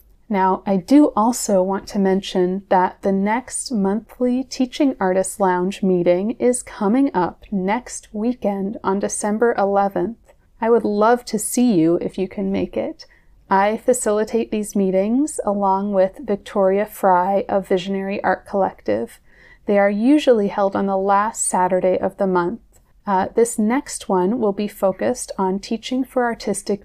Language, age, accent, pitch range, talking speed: English, 30-49, American, 190-235 Hz, 150 wpm